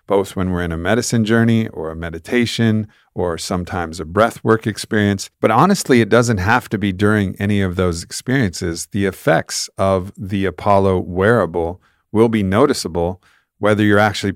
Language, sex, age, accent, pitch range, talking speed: English, male, 50-69, American, 95-110 Hz, 165 wpm